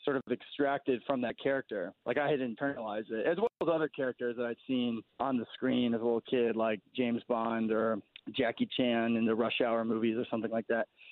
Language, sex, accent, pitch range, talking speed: English, male, American, 120-150 Hz, 220 wpm